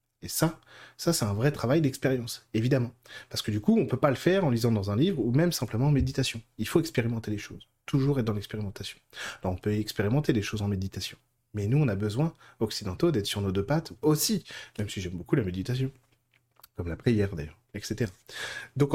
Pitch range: 110-145 Hz